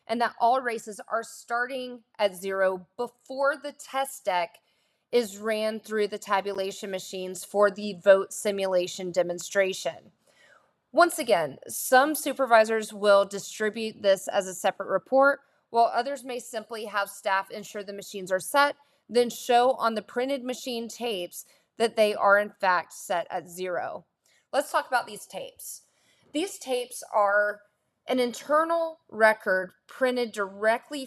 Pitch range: 195-250 Hz